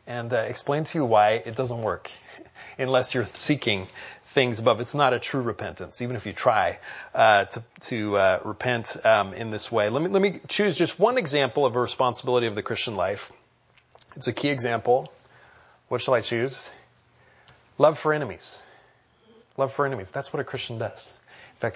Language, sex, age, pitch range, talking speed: English, male, 30-49, 115-145 Hz, 190 wpm